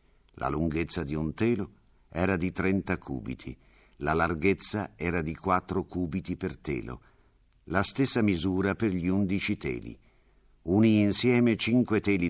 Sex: male